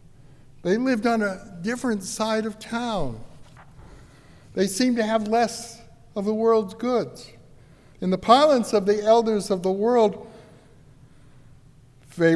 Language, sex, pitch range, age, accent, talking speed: English, male, 150-215 Hz, 60-79, American, 130 wpm